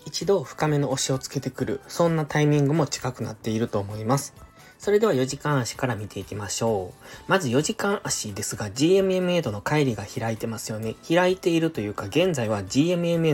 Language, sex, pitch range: Japanese, male, 115-165 Hz